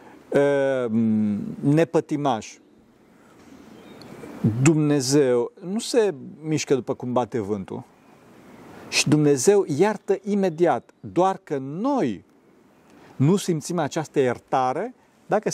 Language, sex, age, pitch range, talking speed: Romanian, male, 40-59, 130-195 Hz, 80 wpm